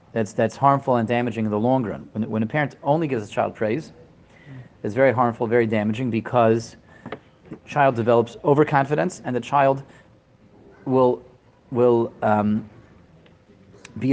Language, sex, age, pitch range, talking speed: English, male, 40-59, 110-130 Hz, 150 wpm